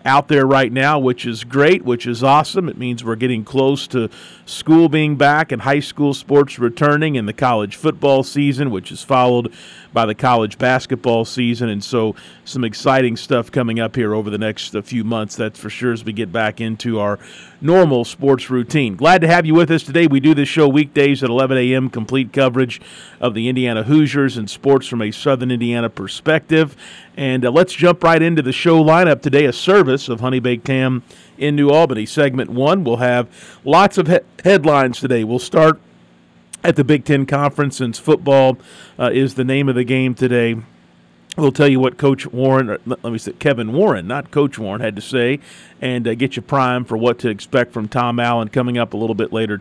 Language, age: English, 40-59